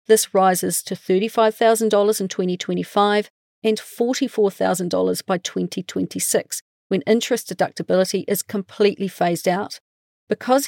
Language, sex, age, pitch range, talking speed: English, female, 40-59, 185-230 Hz, 95 wpm